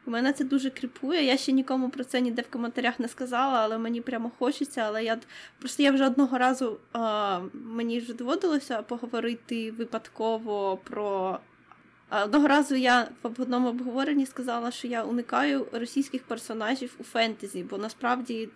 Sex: female